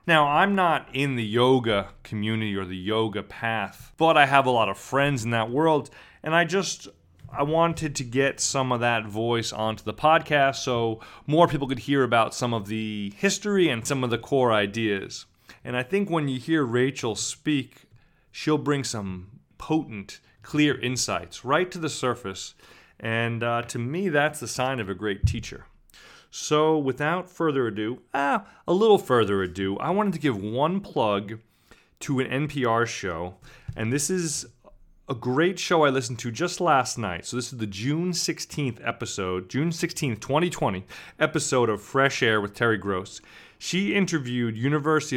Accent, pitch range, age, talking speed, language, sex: American, 110-150 Hz, 30-49, 175 wpm, English, male